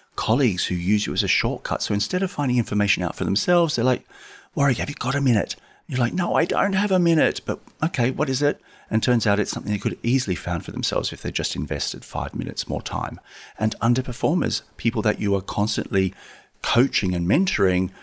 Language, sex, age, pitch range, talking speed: English, male, 40-59, 85-120 Hz, 220 wpm